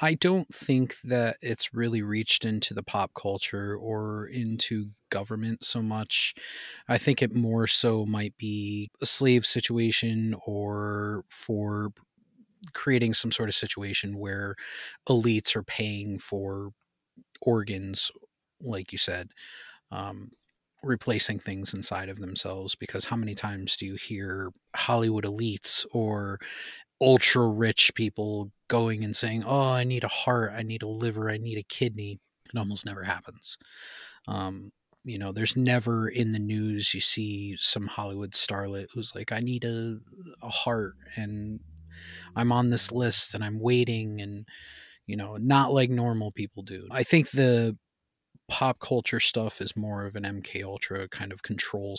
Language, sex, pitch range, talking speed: English, male, 100-120 Hz, 150 wpm